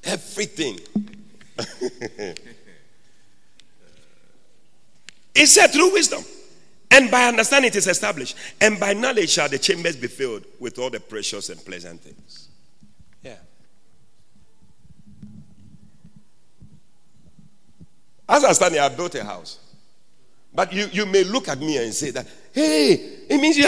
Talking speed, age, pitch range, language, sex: 125 wpm, 50-69, 180-275 Hz, English, male